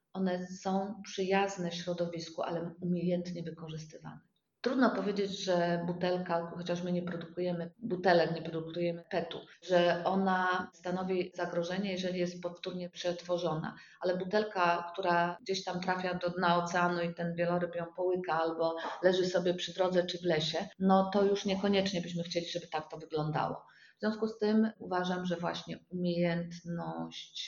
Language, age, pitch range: Polish, 30-49, 170-190 Hz